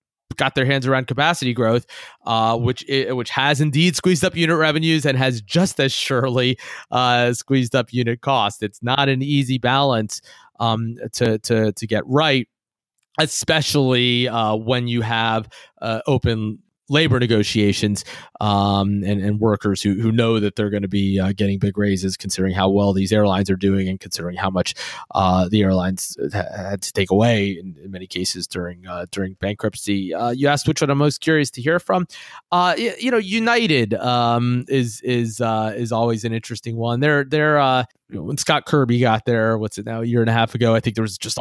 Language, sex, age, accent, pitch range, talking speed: English, male, 30-49, American, 105-130 Hz, 195 wpm